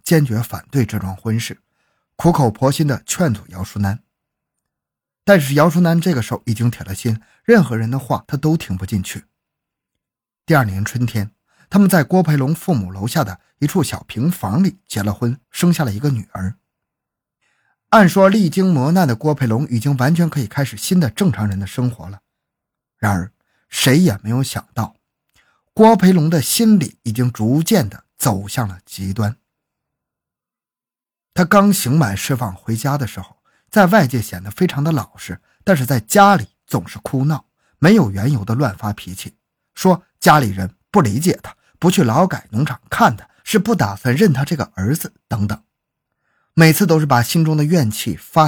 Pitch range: 110-160 Hz